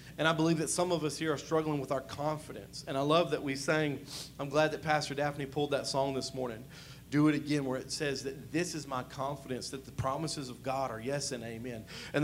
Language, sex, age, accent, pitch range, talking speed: English, male, 40-59, American, 140-180 Hz, 245 wpm